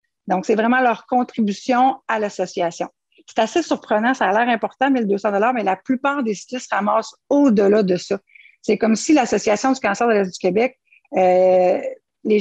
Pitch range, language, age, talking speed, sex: 190-235 Hz, French, 50-69, 180 wpm, female